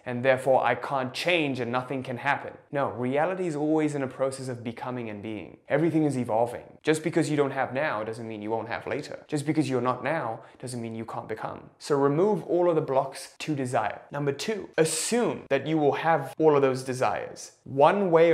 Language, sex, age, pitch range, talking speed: English, male, 20-39, 130-160 Hz, 215 wpm